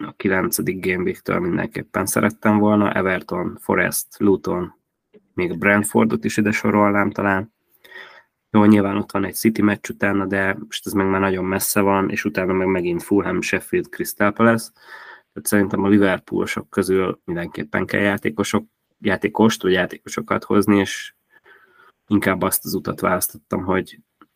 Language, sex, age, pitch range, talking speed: Hungarian, male, 20-39, 95-105 Hz, 145 wpm